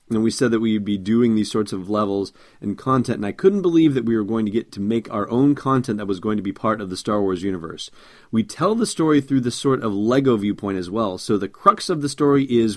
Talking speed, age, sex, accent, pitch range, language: 275 wpm, 30-49, male, American, 100-125 Hz, English